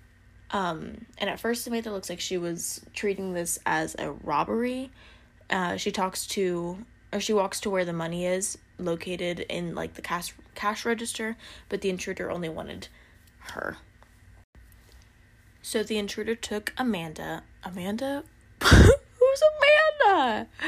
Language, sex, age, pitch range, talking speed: English, female, 20-39, 165-210 Hz, 135 wpm